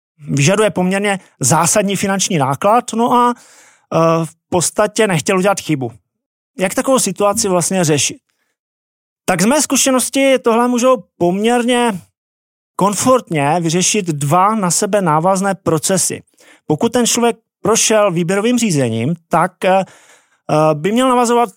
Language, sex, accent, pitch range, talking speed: Czech, male, native, 165-215 Hz, 120 wpm